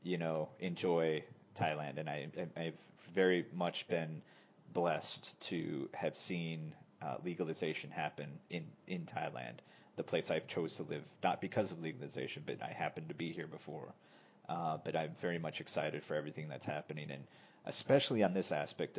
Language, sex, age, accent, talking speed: English, male, 40-59, American, 165 wpm